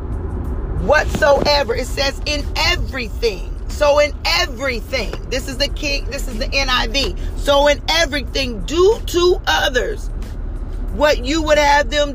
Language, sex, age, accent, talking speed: English, female, 40-59, American, 135 wpm